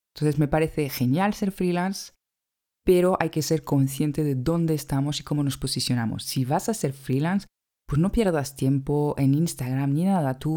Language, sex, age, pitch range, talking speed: Spanish, female, 20-39, 135-175 Hz, 180 wpm